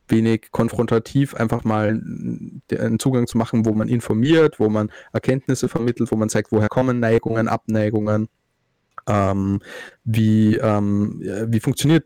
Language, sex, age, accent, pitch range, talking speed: German, male, 20-39, German, 110-120 Hz, 135 wpm